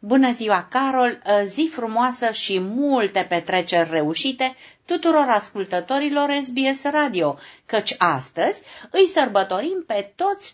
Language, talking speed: Romanian, 110 wpm